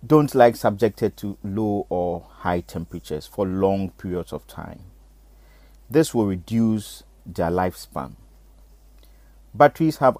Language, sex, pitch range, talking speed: English, male, 95-115 Hz, 120 wpm